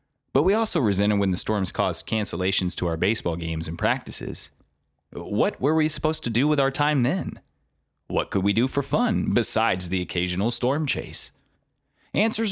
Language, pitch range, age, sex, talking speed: English, 90-120 Hz, 30-49, male, 175 wpm